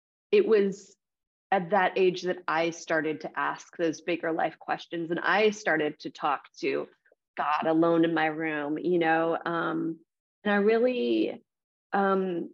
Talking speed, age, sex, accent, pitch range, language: 155 wpm, 30-49, female, American, 180-220 Hz, English